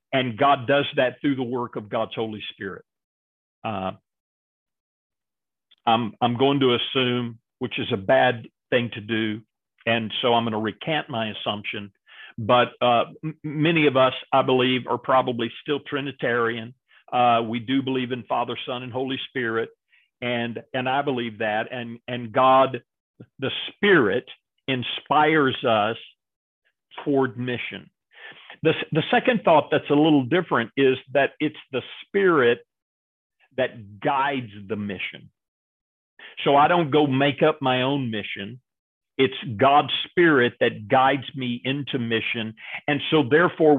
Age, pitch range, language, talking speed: 50-69, 115-145 Hz, English, 145 wpm